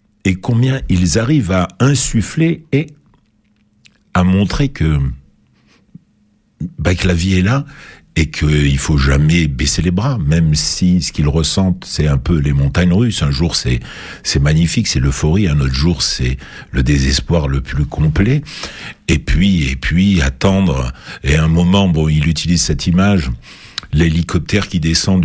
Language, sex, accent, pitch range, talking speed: French, male, French, 75-100 Hz, 160 wpm